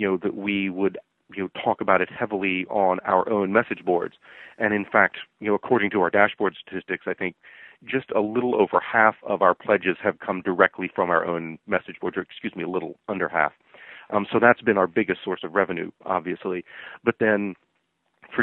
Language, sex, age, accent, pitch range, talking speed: English, male, 40-59, American, 90-100 Hz, 210 wpm